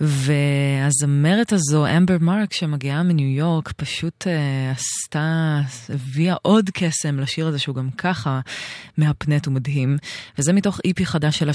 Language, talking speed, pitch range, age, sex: Hebrew, 130 wpm, 135-165 Hz, 20-39, female